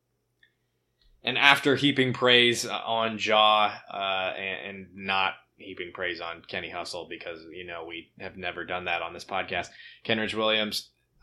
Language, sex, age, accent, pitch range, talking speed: English, male, 20-39, American, 95-120 Hz, 150 wpm